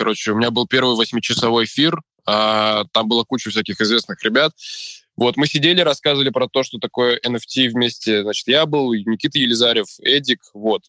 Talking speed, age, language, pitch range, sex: 170 wpm, 20-39, Russian, 115-140 Hz, male